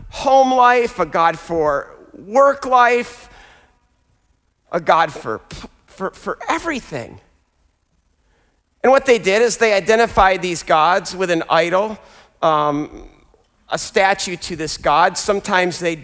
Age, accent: 50-69, American